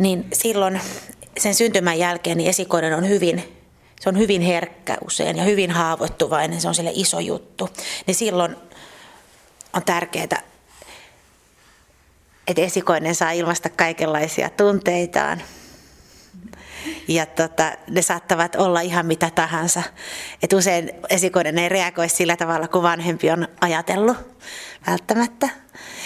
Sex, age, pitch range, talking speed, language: female, 30-49, 165-195 Hz, 120 wpm, Finnish